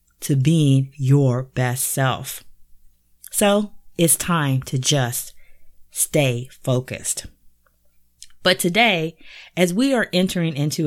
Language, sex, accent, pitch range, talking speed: English, female, American, 125-170 Hz, 105 wpm